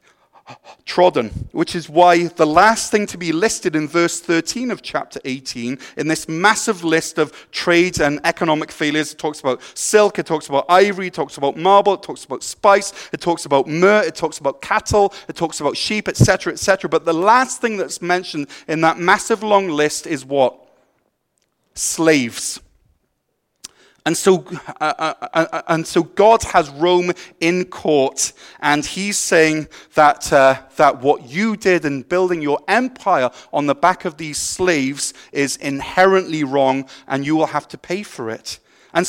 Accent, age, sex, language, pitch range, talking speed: British, 30-49, male, English, 150-185 Hz, 170 wpm